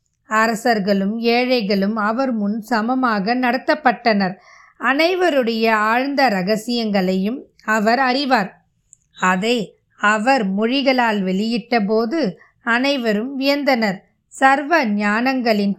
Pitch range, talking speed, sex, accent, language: 210-260 Hz, 55 wpm, female, native, Tamil